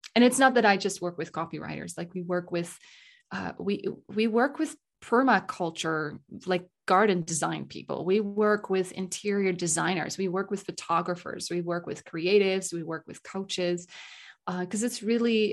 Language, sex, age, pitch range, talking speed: English, female, 30-49, 175-210 Hz, 170 wpm